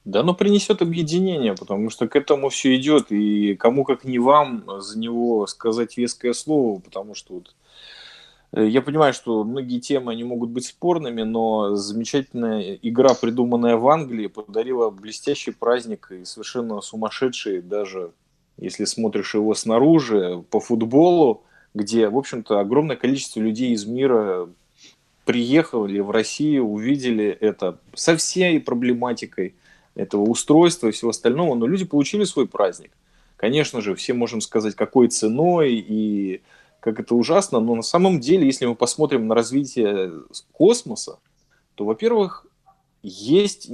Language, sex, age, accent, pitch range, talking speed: Russian, male, 20-39, native, 110-155 Hz, 135 wpm